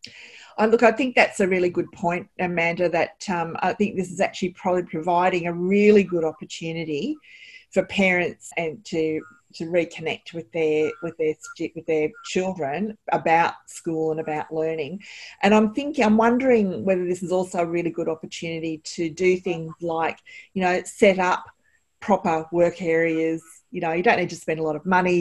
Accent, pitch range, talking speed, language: Australian, 160-185 Hz, 180 wpm, English